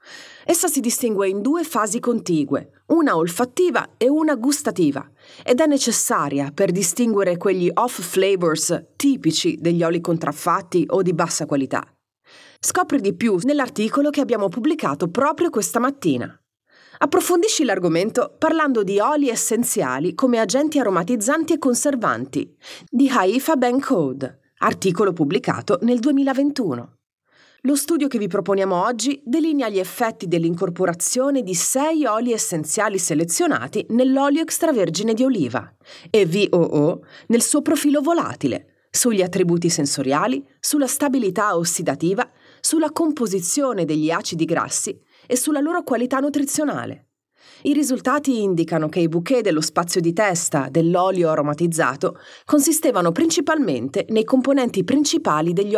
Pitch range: 175-285 Hz